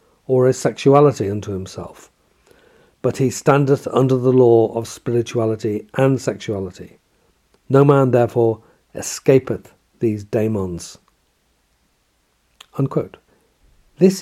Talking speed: 95 wpm